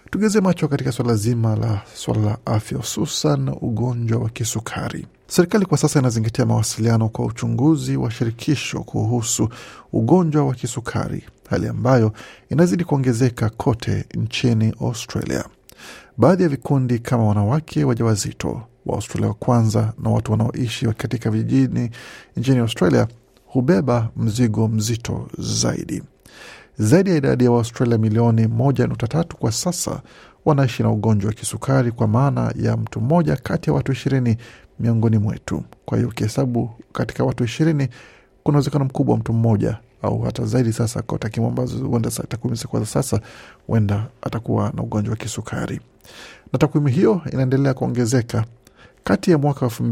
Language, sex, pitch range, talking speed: Swahili, male, 115-135 Hz, 135 wpm